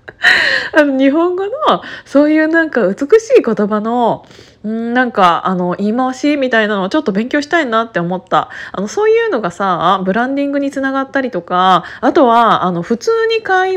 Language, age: Japanese, 20-39